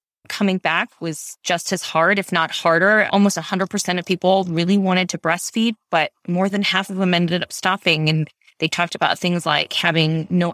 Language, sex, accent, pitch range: English, female, American, 165-195 Hz